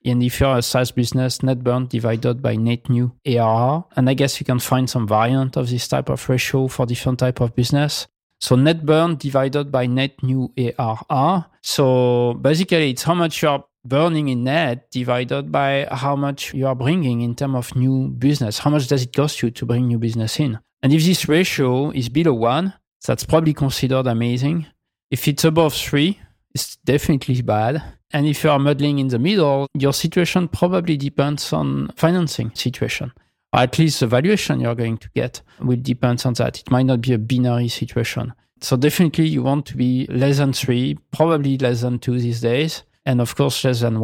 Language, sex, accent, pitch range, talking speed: English, male, French, 120-145 Hz, 200 wpm